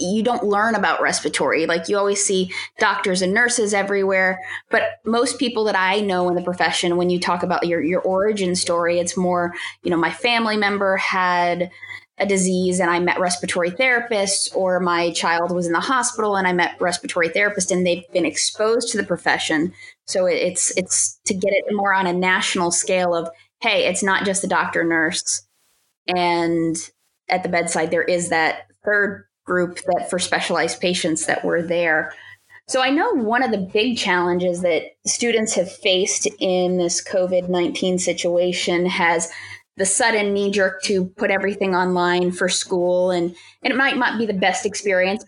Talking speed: 180 wpm